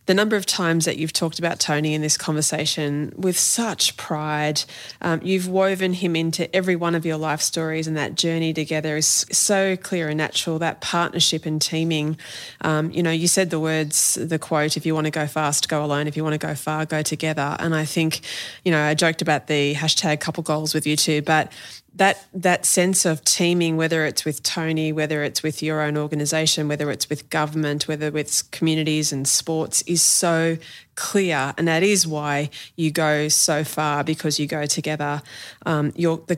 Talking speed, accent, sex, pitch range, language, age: 200 wpm, Australian, female, 150-165 Hz, English, 20-39